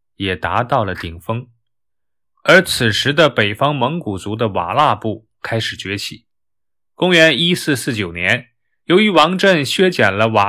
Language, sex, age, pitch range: Chinese, male, 20-39, 110-170 Hz